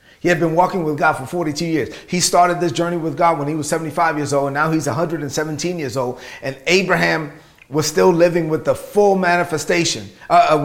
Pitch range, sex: 155-185 Hz, male